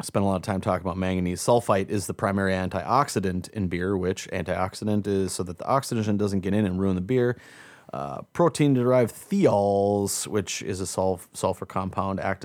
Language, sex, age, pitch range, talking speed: English, male, 30-49, 95-115 Hz, 190 wpm